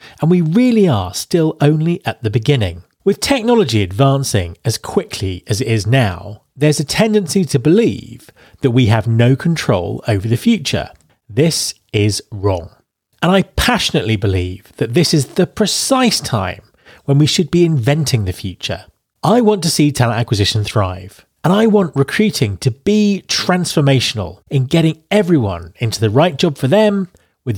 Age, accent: 30-49, British